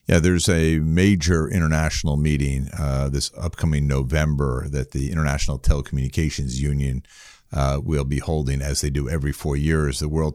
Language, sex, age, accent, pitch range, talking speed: English, male, 50-69, American, 70-85 Hz, 155 wpm